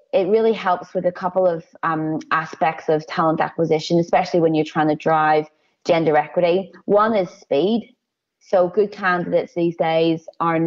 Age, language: 20-39, English